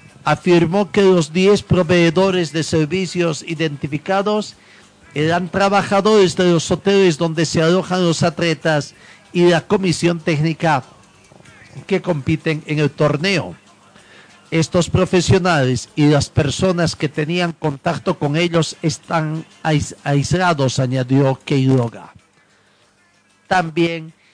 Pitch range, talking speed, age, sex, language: 150-180 Hz, 105 wpm, 50-69, male, Spanish